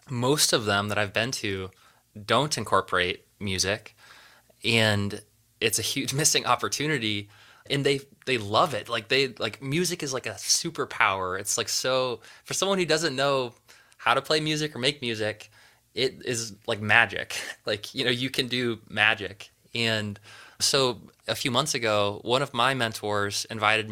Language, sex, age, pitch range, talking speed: English, male, 20-39, 105-130 Hz, 165 wpm